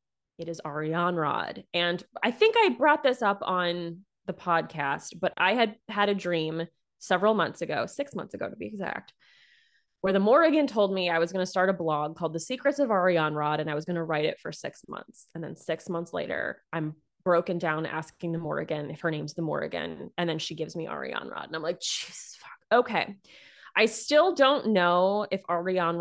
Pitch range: 170-220 Hz